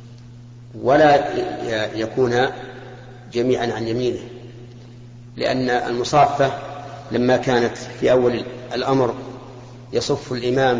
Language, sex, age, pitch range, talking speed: Arabic, male, 40-59, 120-130 Hz, 80 wpm